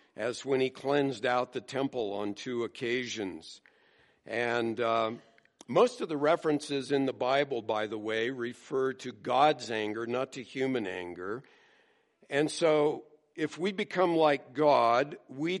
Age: 60-79